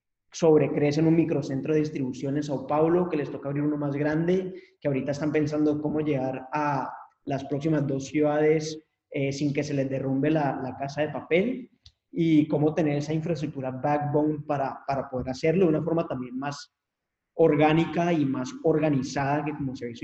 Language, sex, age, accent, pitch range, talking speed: English, male, 20-39, Colombian, 140-155 Hz, 185 wpm